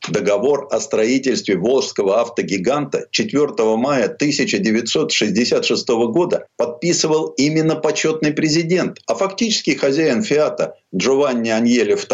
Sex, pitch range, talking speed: male, 120-170 Hz, 95 wpm